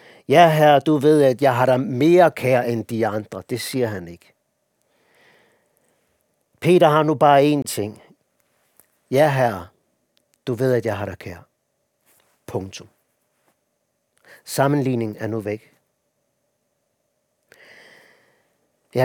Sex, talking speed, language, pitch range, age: male, 120 wpm, Danish, 130-165 Hz, 50-69